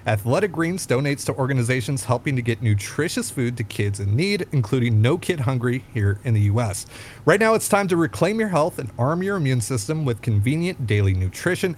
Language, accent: English, American